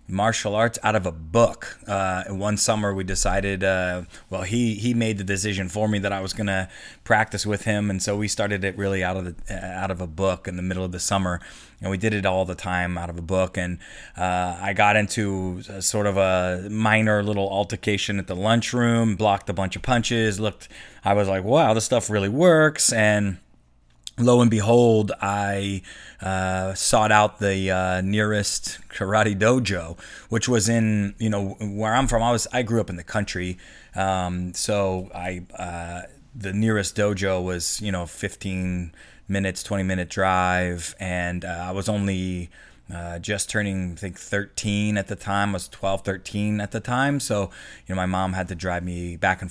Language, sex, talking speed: English, male, 200 wpm